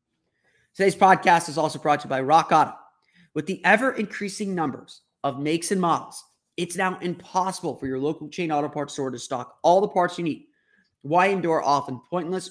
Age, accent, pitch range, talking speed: 30-49, American, 140-180 Hz, 185 wpm